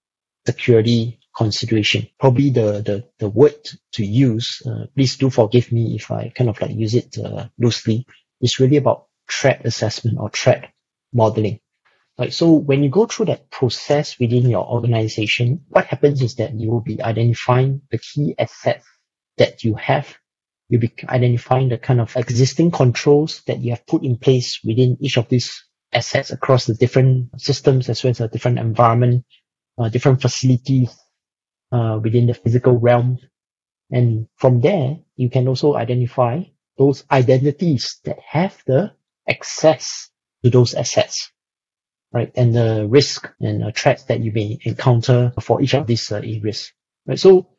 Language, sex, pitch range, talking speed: English, male, 115-135 Hz, 160 wpm